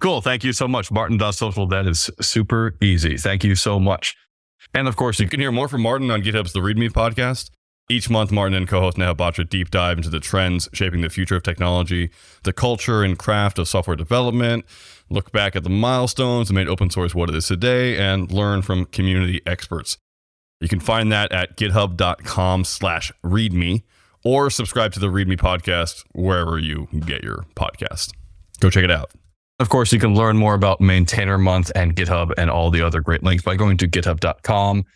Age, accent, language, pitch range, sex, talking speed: 20-39, American, English, 90-115 Hz, male, 195 wpm